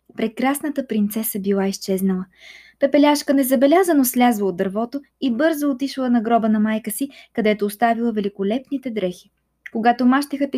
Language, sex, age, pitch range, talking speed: Bulgarian, female, 20-39, 225-300 Hz, 130 wpm